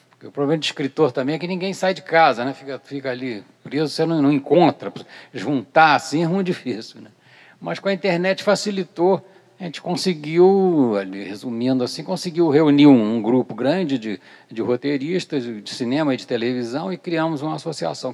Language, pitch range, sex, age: Portuguese, 105-160 Hz, male, 60-79